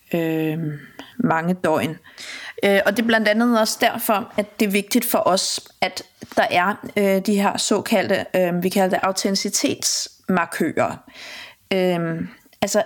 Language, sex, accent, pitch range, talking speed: Danish, female, native, 165-200 Hz, 120 wpm